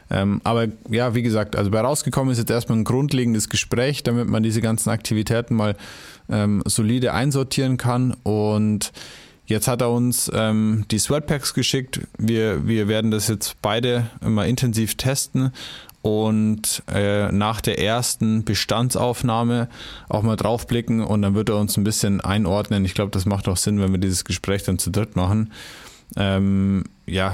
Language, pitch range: German, 100-120 Hz